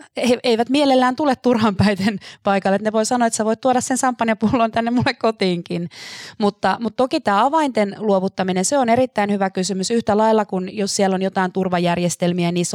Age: 20-39